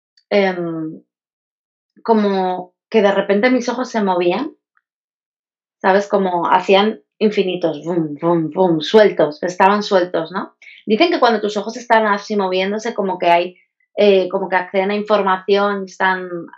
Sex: female